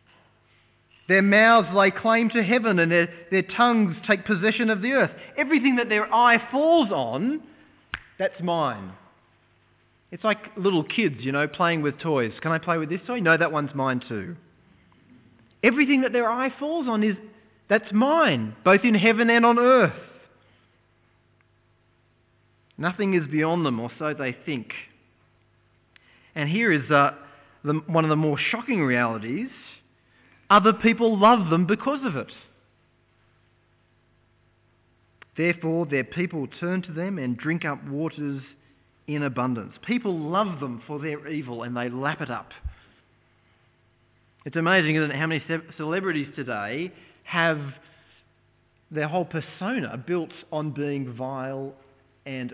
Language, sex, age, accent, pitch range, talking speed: English, male, 30-49, Australian, 120-190 Hz, 140 wpm